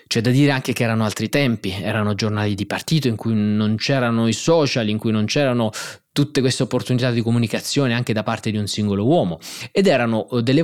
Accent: native